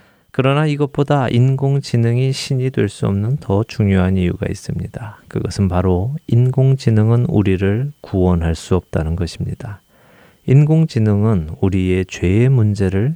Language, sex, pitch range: Korean, male, 95-125 Hz